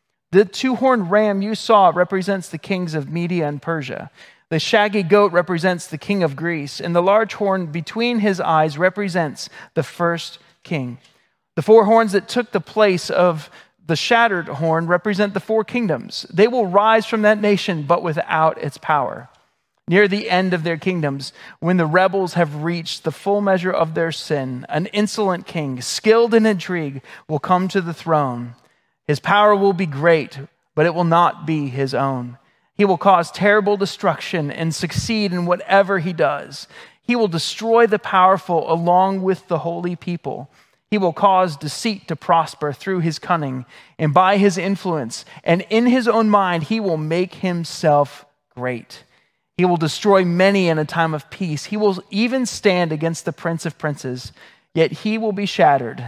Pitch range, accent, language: 160-200 Hz, American, English